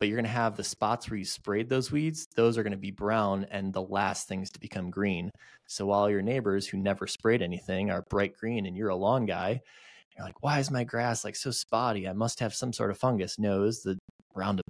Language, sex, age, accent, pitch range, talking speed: English, male, 20-39, American, 100-120 Hz, 250 wpm